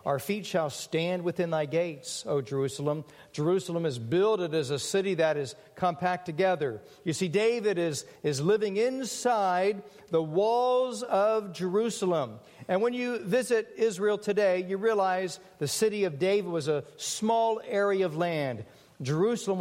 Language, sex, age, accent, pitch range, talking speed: English, male, 50-69, American, 160-210 Hz, 150 wpm